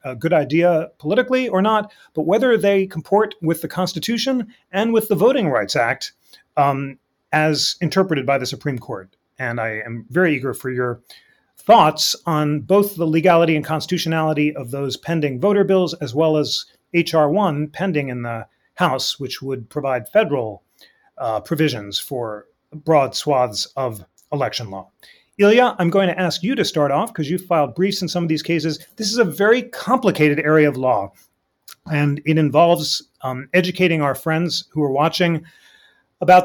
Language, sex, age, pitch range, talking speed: English, male, 30-49, 150-185 Hz, 170 wpm